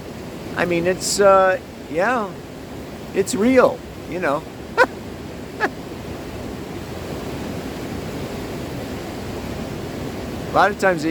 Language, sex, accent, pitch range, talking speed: English, male, American, 155-185 Hz, 70 wpm